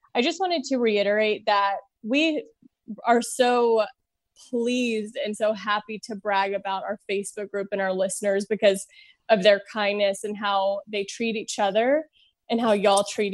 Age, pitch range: 20-39, 210-240 Hz